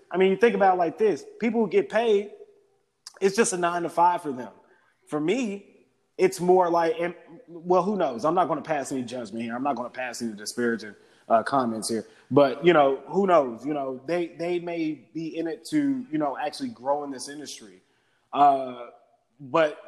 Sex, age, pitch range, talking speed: male, 20-39, 135-170 Hz, 210 wpm